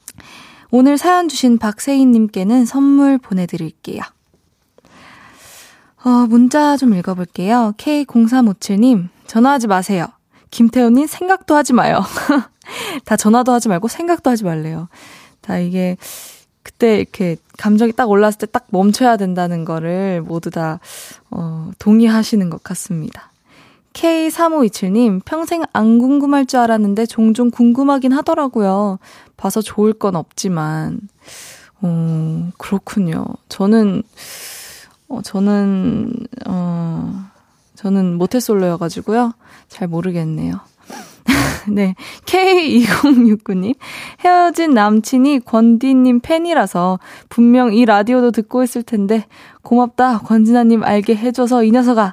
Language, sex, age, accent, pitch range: Korean, female, 20-39, native, 195-255 Hz